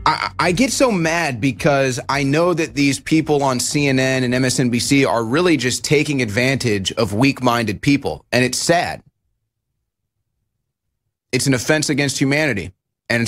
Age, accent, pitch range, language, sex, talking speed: 30-49, American, 120-150 Hz, English, male, 145 wpm